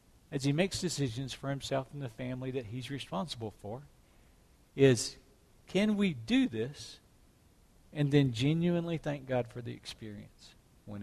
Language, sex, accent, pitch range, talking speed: English, male, American, 120-155 Hz, 145 wpm